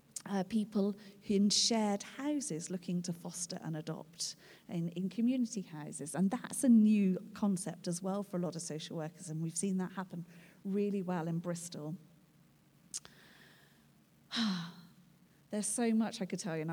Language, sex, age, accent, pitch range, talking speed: English, female, 40-59, British, 170-220 Hz, 160 wpm